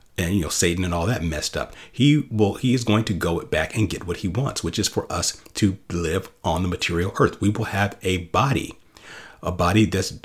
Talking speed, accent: 235 wpm, American